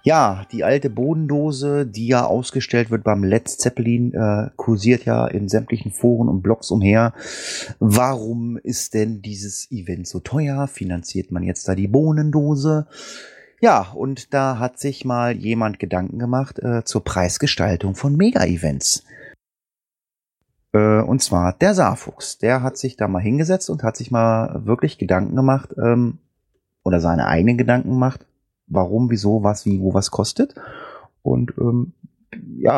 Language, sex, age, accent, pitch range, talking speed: German, male, 30-49, German, 100-130 Hz, 150 wpm